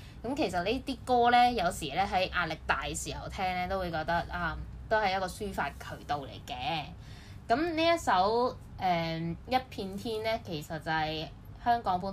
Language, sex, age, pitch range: Chinese, female, 10-29, 160-205 Hz